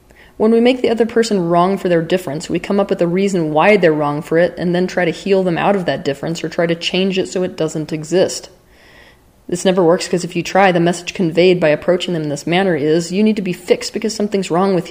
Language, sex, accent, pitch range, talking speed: English, female, American, 165-205 Hz, 265 wpm